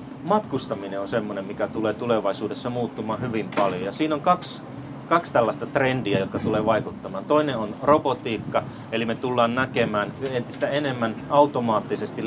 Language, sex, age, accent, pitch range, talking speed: Finnish, male, 30-49, native, 110-135 Hz, 140 wpm